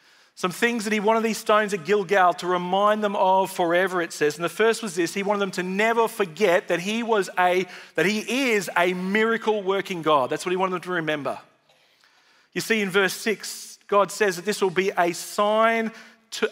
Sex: male